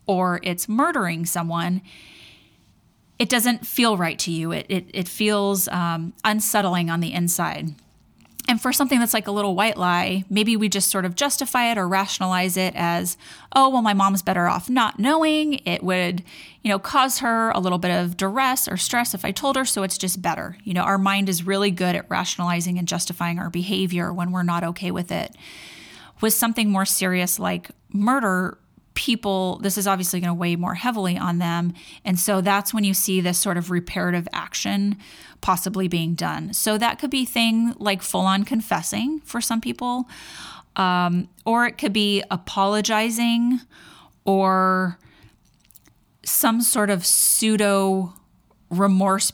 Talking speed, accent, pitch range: 170 wpm, American, 180-225 Hz